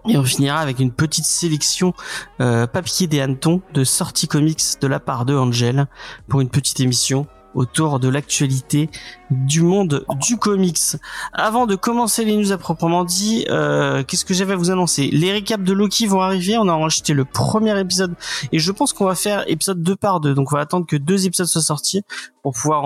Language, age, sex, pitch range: French, 30-49, male, 140-190 Hz